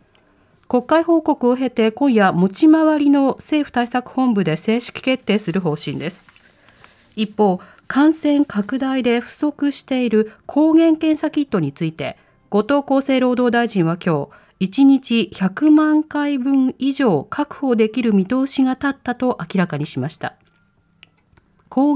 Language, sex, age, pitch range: Japanese, female, 40-59, 195-285 Hz